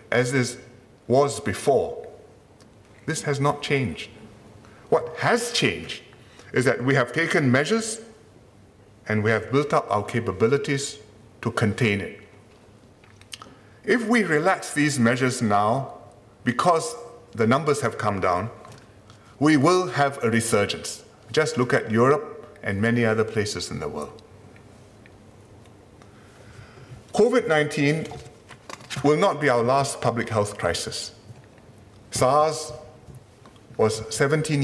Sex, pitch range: male, 105-145 Hz